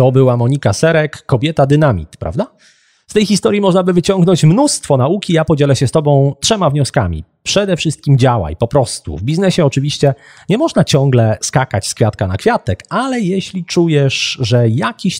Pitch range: 115-165 Hz